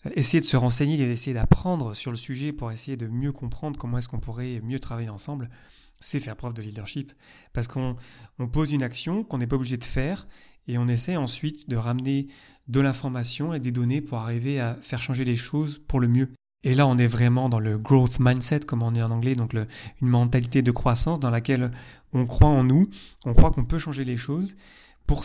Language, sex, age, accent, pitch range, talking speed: French, male, 30-49, French, 120-150 Hz, 225 wpm